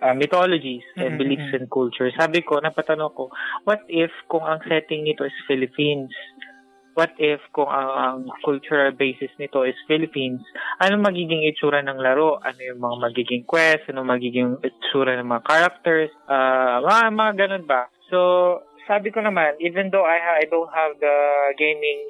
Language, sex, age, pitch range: Filipino, male, 20-39, 130-160 Hz